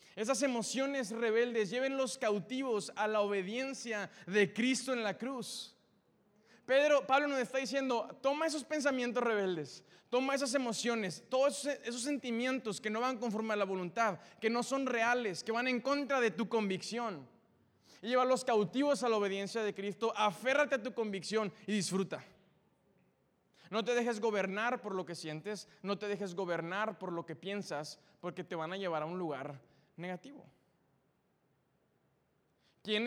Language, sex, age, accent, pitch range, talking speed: Spanish, male, 20-39, Mexican, 185-235 Hz, 160 wpm